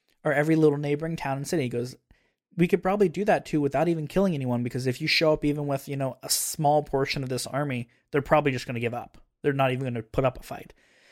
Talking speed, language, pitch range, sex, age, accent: 270 wpm, English, 130-155 Hz, male, 20-39, American